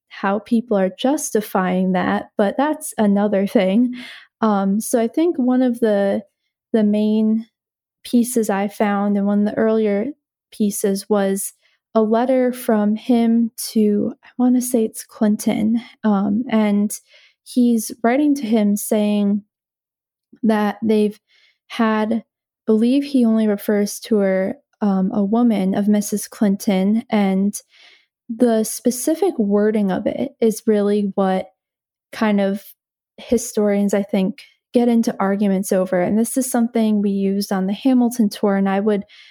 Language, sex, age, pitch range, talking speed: English, female, 20-39, 205-235 Hz, 140 wpm